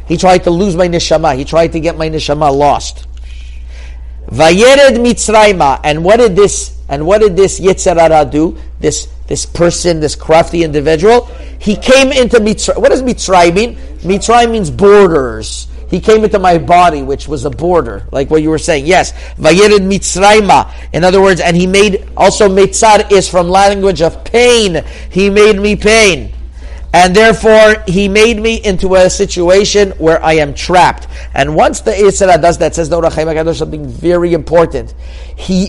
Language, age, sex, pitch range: English, 50-69, male, 155-210 Hz